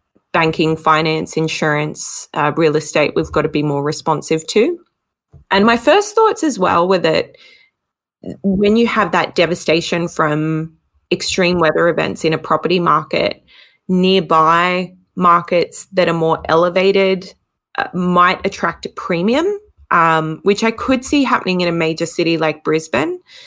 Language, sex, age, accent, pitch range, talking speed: English, female, 20-39, Australian, 160-200 Hz, 145 wpm